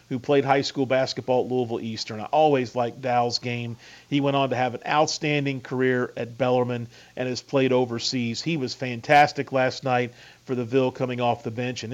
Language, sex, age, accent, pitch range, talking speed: English, male, 40-59, American, 120-145 Hz, 200 wpm